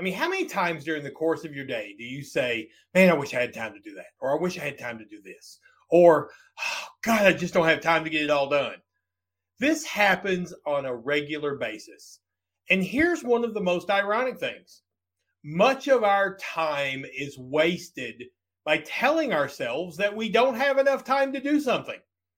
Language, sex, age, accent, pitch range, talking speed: English, male, 40-59, American, 140-215 Hz, 205 wpm